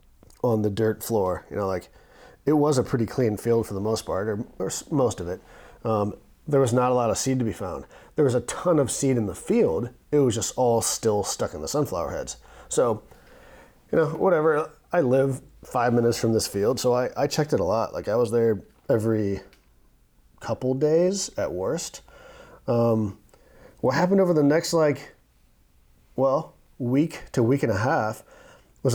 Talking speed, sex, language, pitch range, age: 195 wpm, male, English, 105-135 Hz, 30-49